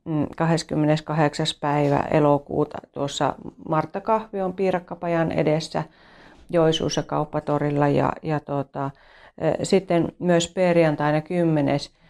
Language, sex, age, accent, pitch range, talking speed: Finnish, female, 40-59, native, 145-170 Hz, 85 wpm